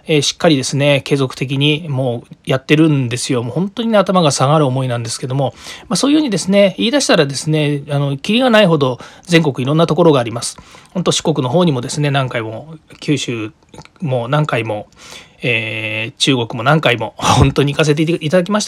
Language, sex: Japanese, male